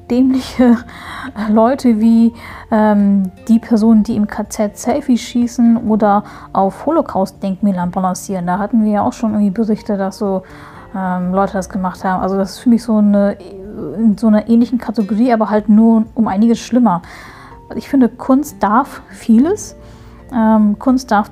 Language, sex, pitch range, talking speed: German, female, 205-245 Hz, 160 wpm